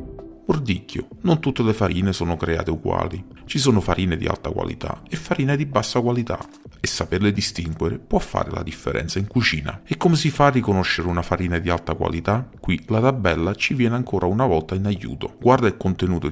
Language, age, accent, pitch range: Italian, 40-59, native, 90-125 Hz